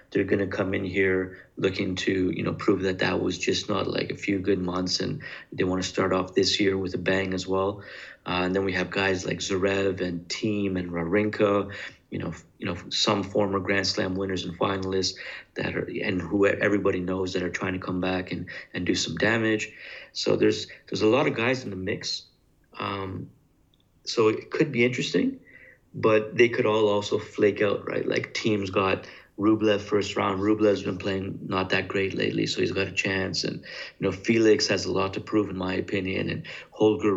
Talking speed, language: 210 wpm, English